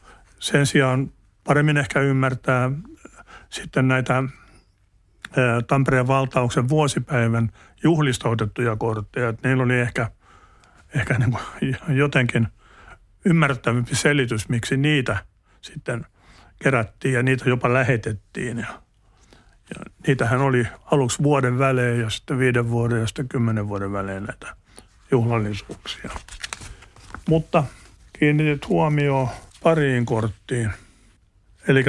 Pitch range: 110-135 Hz